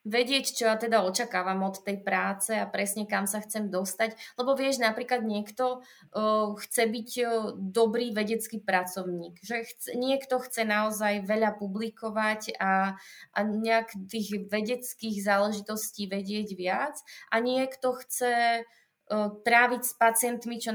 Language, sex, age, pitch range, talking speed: Slovak, female, 20-39, 210-235 Hz, 140 wpm